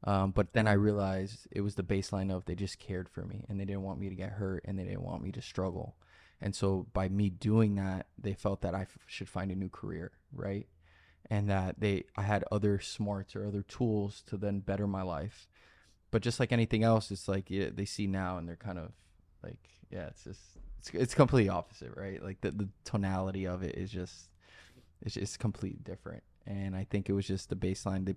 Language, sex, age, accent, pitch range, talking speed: English, male, 20-39, American, 95-105 Hz, 230 wpm